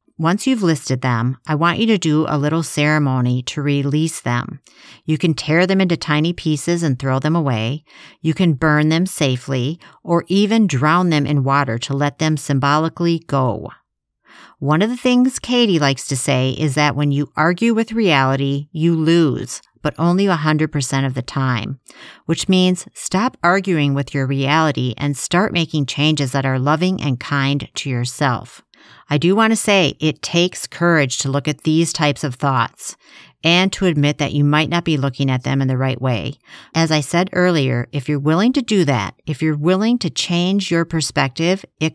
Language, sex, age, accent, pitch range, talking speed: English, female, 50-69, American, 140-170 Hz, 185 wpm